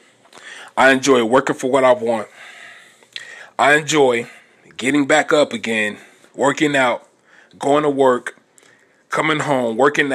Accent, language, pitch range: American, English, 145-180 Hz